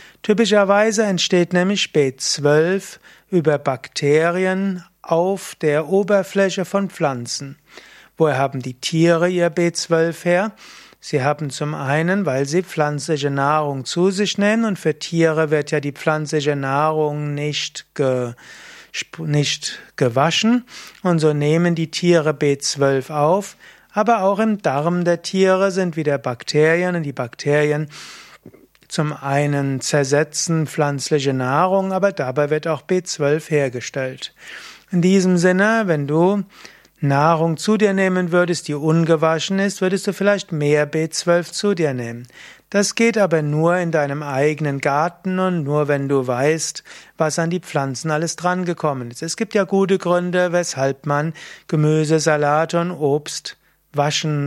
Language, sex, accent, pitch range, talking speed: German, male, German, 145-180 Hz, 135 wpm